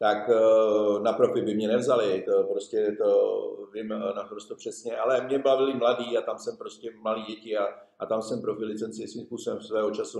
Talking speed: 180 wpm